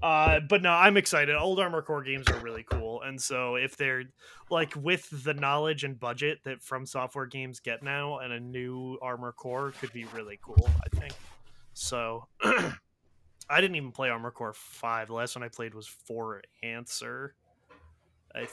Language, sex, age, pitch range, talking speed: English, male, 20-39, 115-160 Hz, 180 wpm